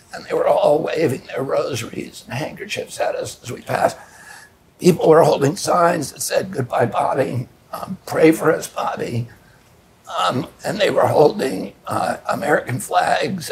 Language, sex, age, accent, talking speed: English, male, 60-79, American, 155 wpm